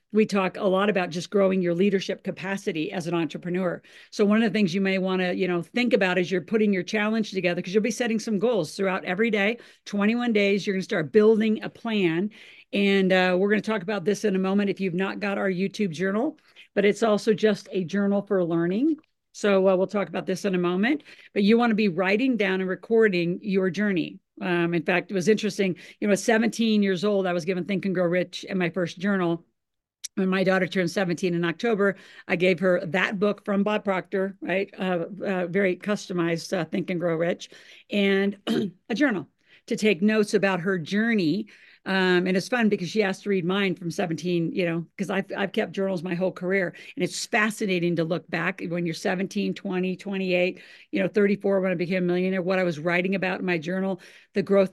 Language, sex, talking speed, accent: English, female, 225 wpm, American